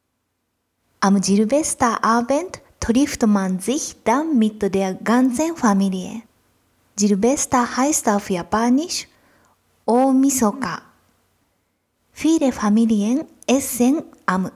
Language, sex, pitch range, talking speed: German, female, 205-260 Hz, 80 wpm